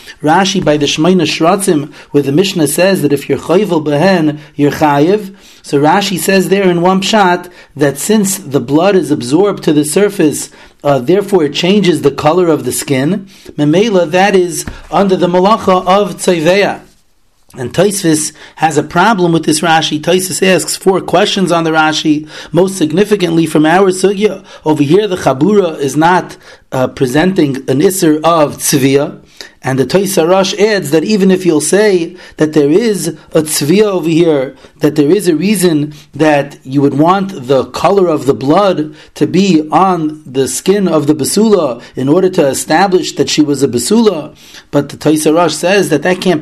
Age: 30-49